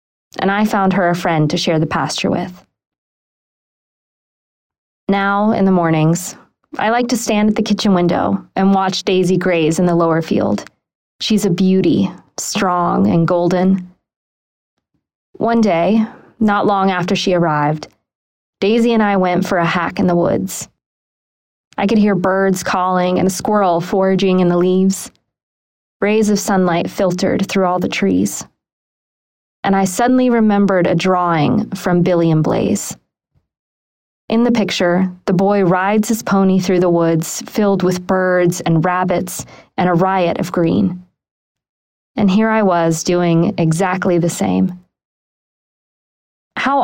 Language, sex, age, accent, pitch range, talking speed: English, female, 20-39, American, 175-200 Hz, 145 wpm